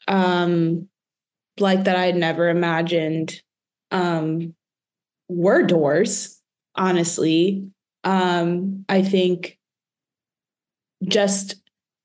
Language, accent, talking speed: English, American, 75 wpm